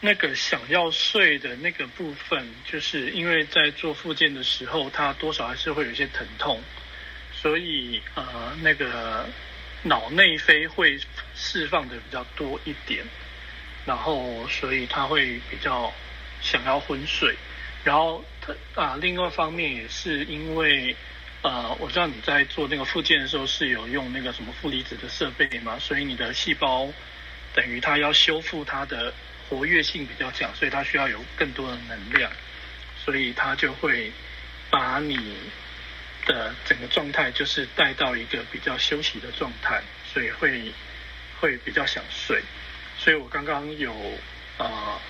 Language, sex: Chinese, male